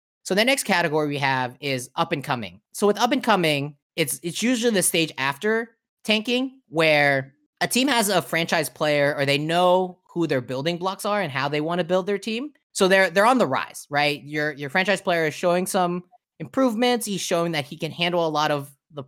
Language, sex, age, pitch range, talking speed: English, male, 20-39, 140-190 Hz, 220 wpm